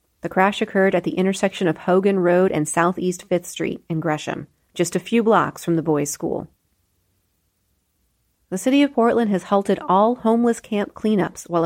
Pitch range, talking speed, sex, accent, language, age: 165-205 Hz, 175 wpm, female, American, English, 30-49